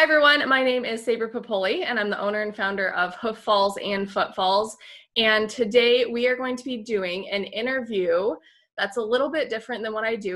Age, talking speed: 20-39, 220 wpm